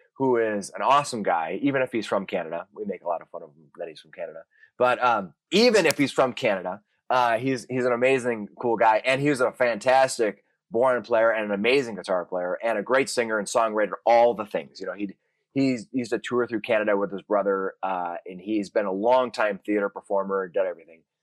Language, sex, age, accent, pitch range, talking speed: English, male, 30-49, American, 100-130 Hz, 230 wpm